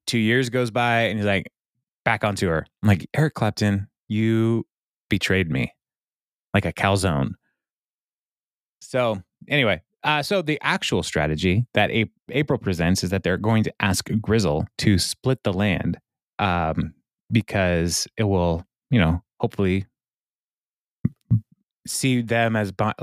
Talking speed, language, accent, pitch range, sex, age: 140 wpm, English, American, 95-120 Hz, male, 20-39